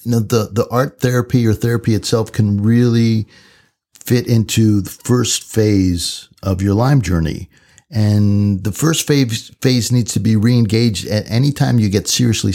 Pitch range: 95-120 Hz